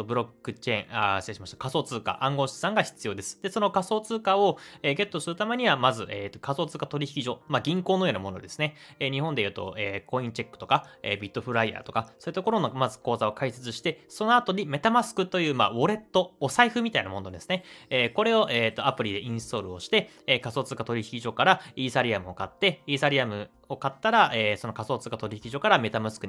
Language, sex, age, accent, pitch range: Japanese, male, 20-39, native, 115-190 Hz